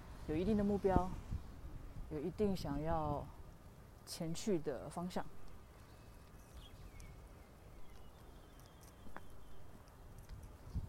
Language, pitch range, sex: Chinese, 120-200 Hz, female